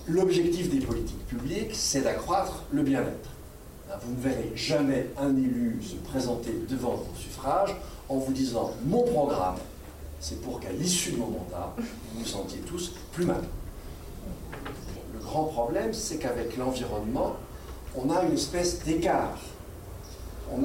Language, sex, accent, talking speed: French, male, French, 150 wpm